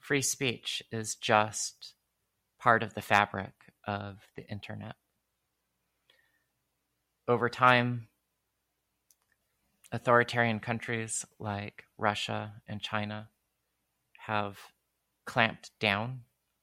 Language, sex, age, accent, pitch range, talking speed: English, male, 30-49, American, 105-120 Hz, 80 wpm